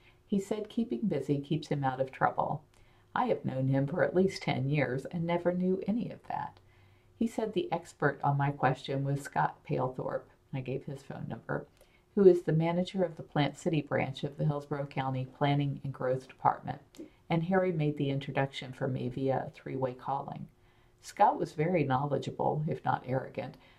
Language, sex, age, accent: English, female, 50-69, American